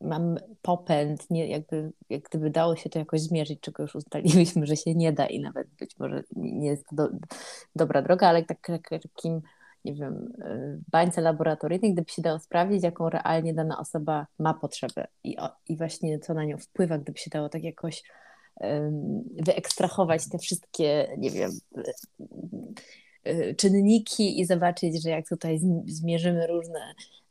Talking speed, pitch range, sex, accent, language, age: 160 wpm, 155-180 Hz, female, native, Polish, 20-39